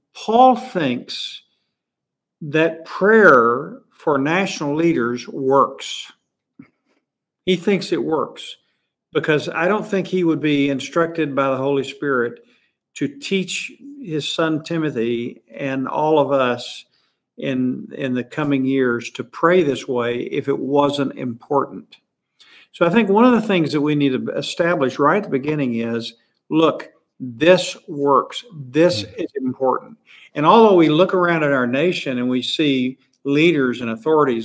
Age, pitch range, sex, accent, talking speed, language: 50-69, 135-185 Hz, male, American, 145 wpm, English